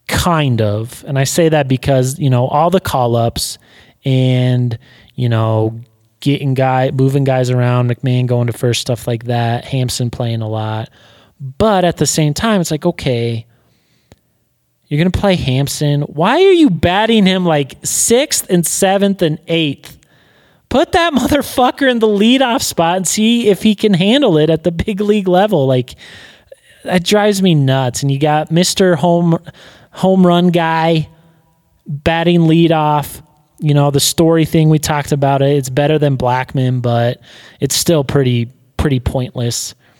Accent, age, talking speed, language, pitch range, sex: American, 30-49, 165 wpm, English, 125-180 Hz, male